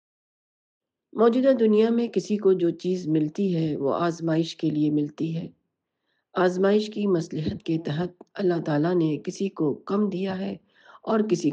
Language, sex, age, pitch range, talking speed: Urdu, female, 50-69, 155-205 Hz, 155 wpm